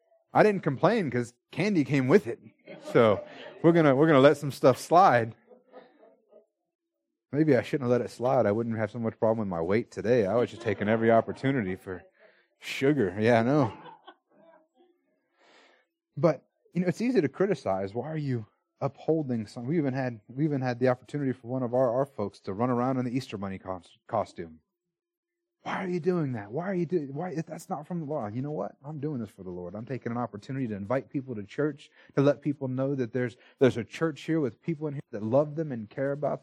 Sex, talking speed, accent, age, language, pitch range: male, 225 wpm, American, 30-49, English, 120-180 Hz